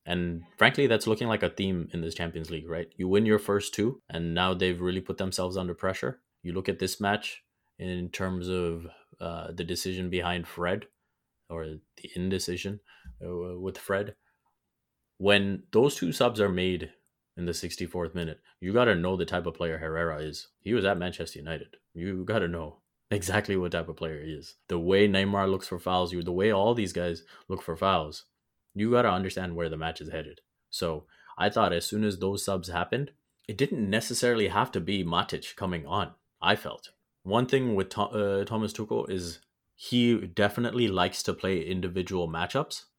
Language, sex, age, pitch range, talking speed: English, male, 20-39, 85-100 Hz, 190 wpm